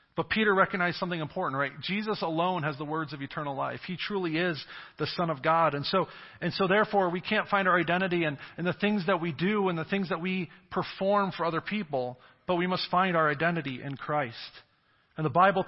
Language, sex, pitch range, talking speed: English, male, 135-180 Hz, 220 wpm